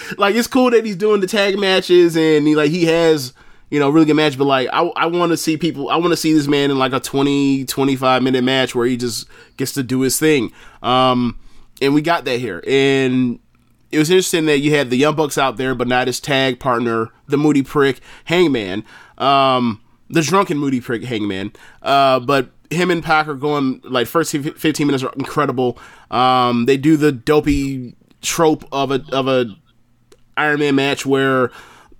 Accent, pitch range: American, 125-155 Hz